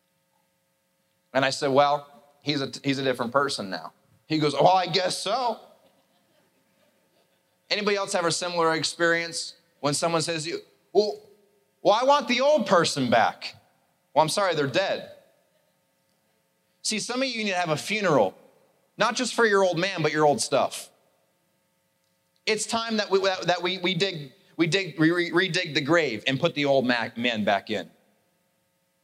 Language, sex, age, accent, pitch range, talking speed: English, male, 30-49, American, 160-230 Hz, 165 wpm